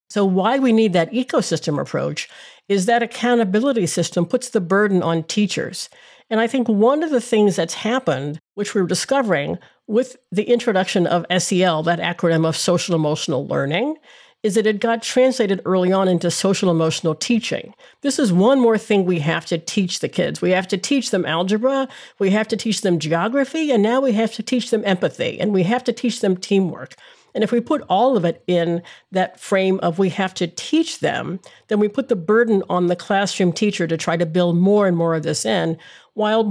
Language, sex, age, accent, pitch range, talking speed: English, female, 50-69, American, 175-230 Hz, 205 wpm